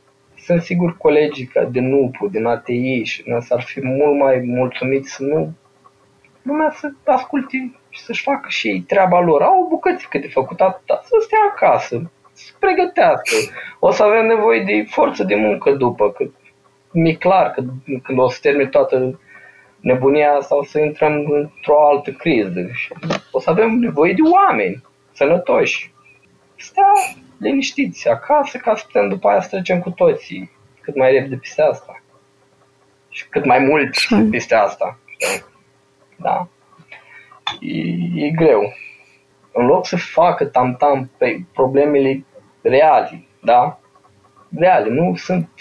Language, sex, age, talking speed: Romanian, male, 20-39, 140 wpm